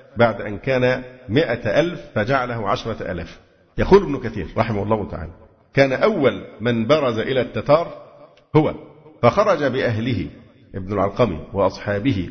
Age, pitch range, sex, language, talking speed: 50-69, 110-145 Hz, male, Arabic, 115 wpm